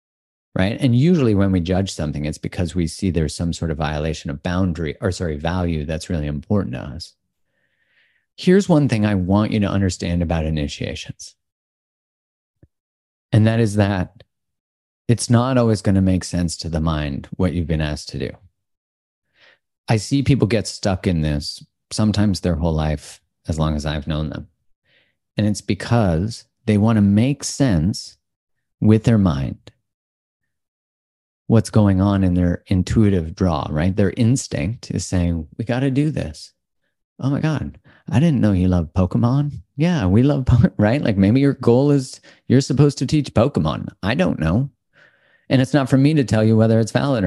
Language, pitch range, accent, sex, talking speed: English, 85-120 Hz, American, male, 175 wpm